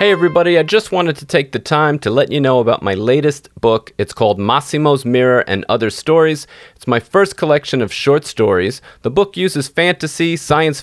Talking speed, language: 200 wpm, English